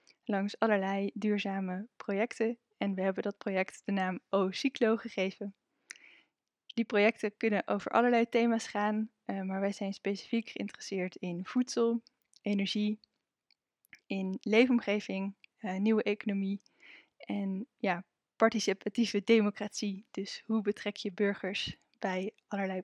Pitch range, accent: 195-230 Hz, Dutch